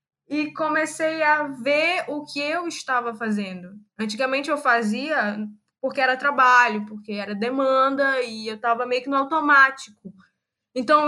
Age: 10-29